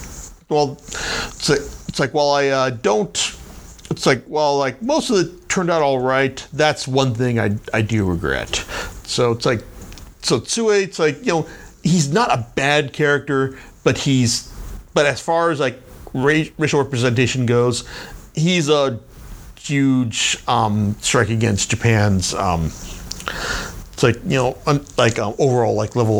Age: 50-69